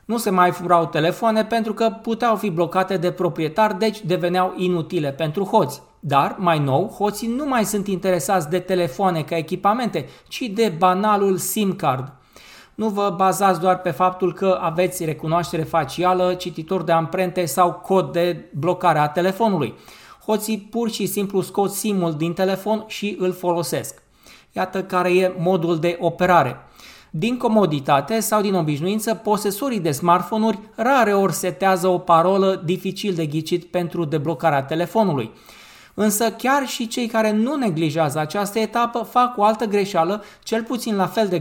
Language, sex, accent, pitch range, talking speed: Romanian, male, native, 175-210 Hz, 155 wpm